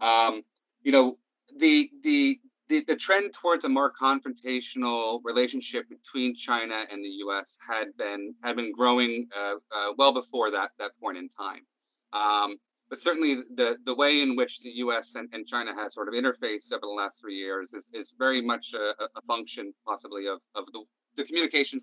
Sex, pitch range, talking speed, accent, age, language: male, 110-140 Hz, 185 wpm, American, 30-49, English